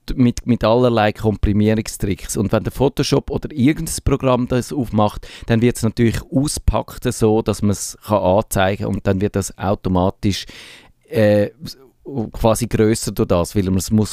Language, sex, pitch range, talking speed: German, male, 100-115 Hz, 160 wpm